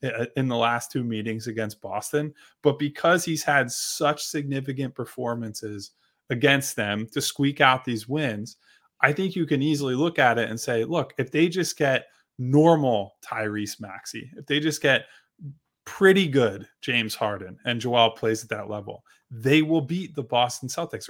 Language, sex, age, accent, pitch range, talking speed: English, male, 20-39, American, 115-150 Hz, 170 wpm